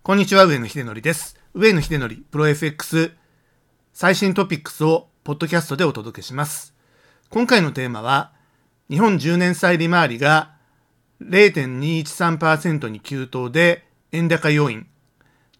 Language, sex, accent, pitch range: Japanese, male, native, 135-190 Hz